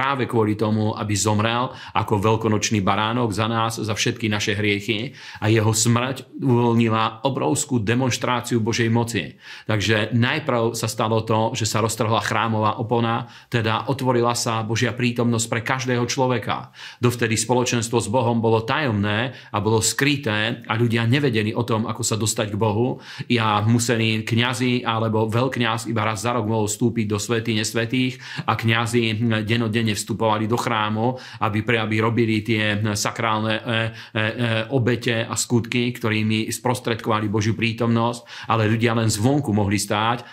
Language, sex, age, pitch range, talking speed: Slovak, male, 40-59, 110-120 Hz, 145 wpm